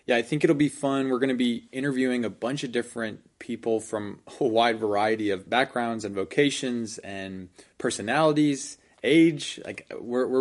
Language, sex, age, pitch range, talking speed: English, male, 20-39, 105-125 Hz, 175 wpm